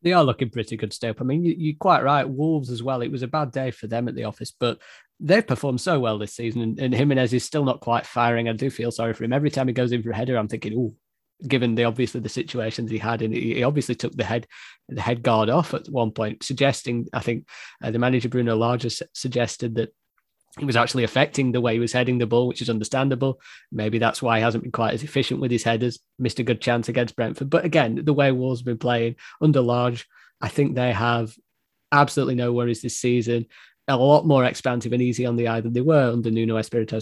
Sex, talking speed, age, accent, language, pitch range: male, 245 wpm, 20-39, British, English, 115-135 Hz